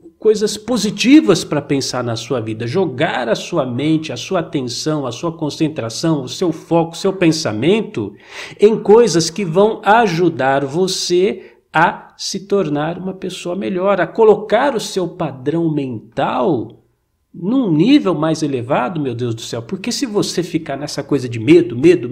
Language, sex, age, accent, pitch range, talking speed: Portuguese, male, 50-69, Brazilian, 145-190 Hz, 155 wpm